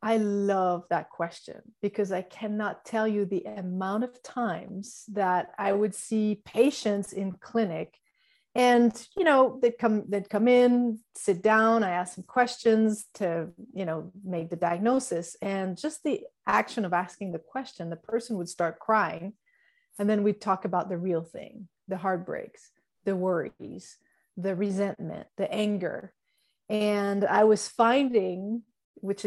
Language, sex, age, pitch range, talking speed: English, female, 30-49, 185-230 Hz, 150 wpm